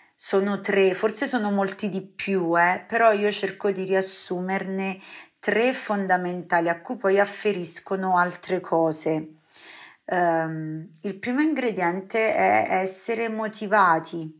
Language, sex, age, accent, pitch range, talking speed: Italian, female, 30-49, native, 175-200 Hz, 115 wpm